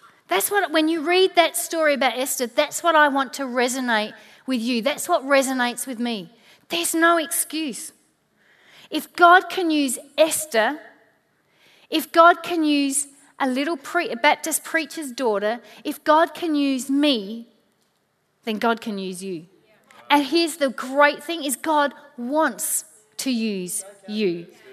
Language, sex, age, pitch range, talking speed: English, female, 30-49, 270-360 Hz, 145 wpm